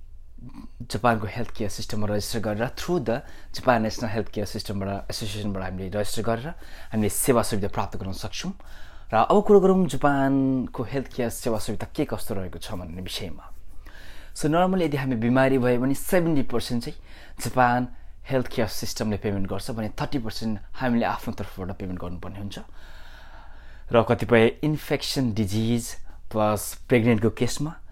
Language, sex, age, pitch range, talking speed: English, male, 20-39, 95-120 Hz, 95 wpm